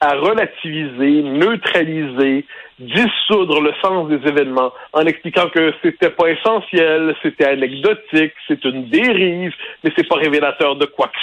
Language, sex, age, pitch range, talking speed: French, male, 60-79, 150-215 Hz, 140 wpm